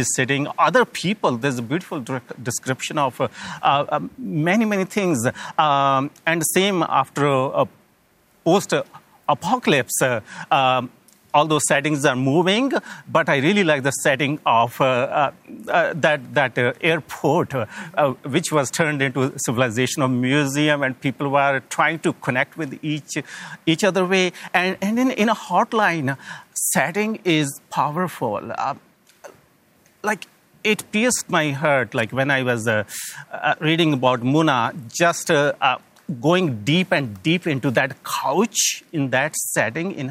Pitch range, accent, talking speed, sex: 135-180 Hz, Indian, 145 wpm, male